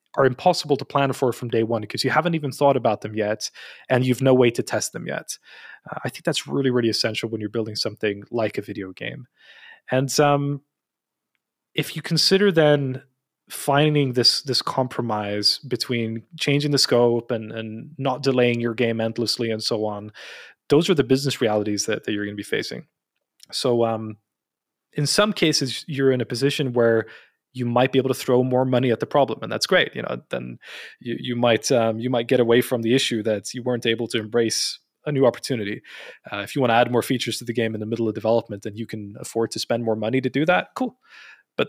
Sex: male